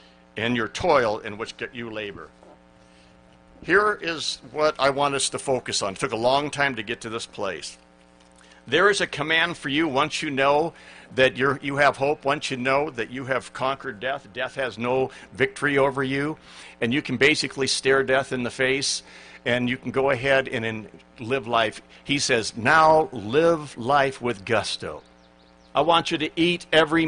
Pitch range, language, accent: 115-155 Hz, English, American